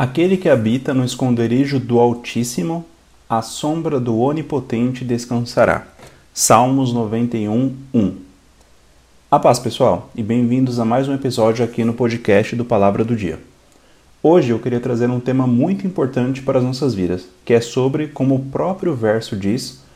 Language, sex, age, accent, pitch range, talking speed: Portuguese, male, 30-49, Brazilian, 110-135 Hz, 155 wpm